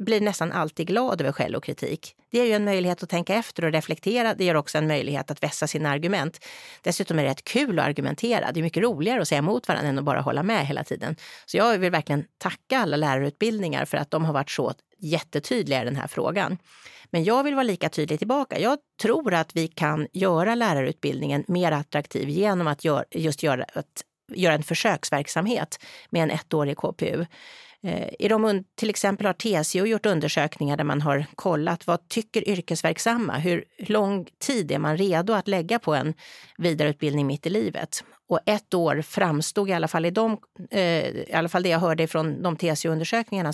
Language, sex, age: Swedish, female, 30-49